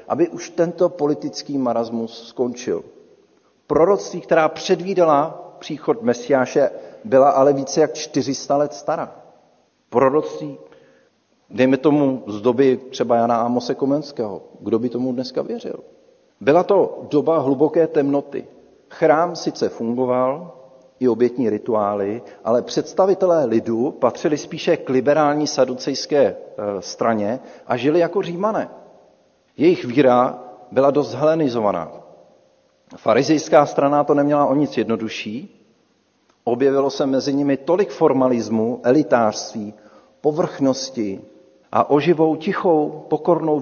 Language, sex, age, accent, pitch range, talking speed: Czech, male, 50-69, native, 120-160 Hz, 110 wpm